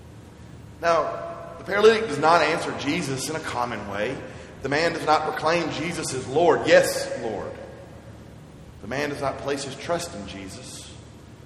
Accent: American